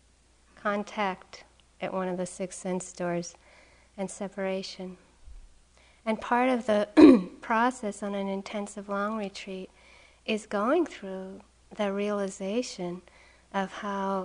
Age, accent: 50-69, American